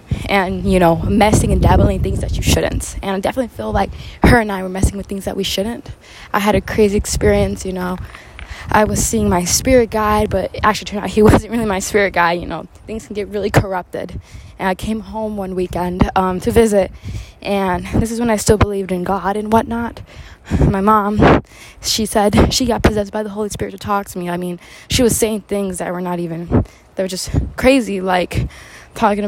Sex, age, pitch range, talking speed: female, 10-29, 185-215 Hz, 220 wpm